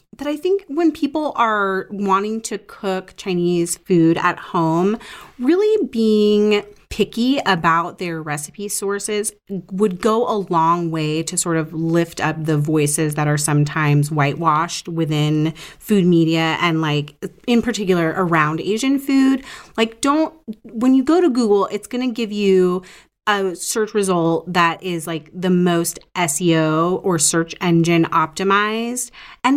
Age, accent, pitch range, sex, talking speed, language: 30-49, American, 170-225 Hz, female, 145 wpm, English